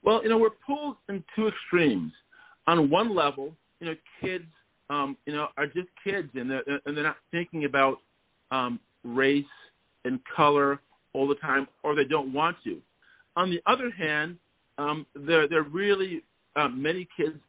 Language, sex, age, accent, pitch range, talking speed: English, male, 50-69, American, 130-170 Hz, 170 wpm